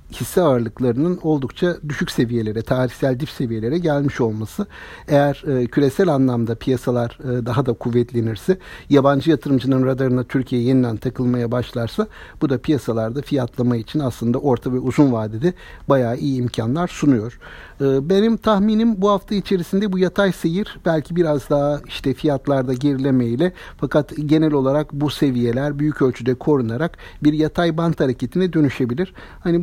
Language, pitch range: Turkish, 125-155 Hz